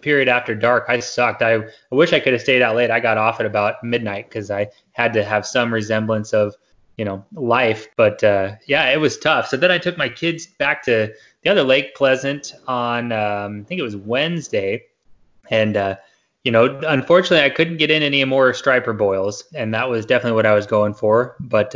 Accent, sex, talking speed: American, male, 220 wpm